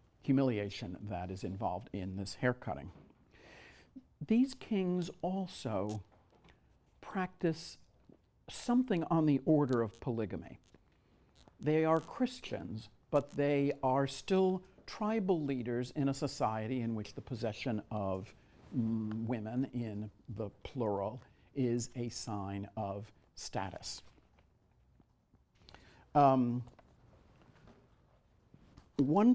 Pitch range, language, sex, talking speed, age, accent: 110-150 Hz, English, male, 90 wpm, 50-69, American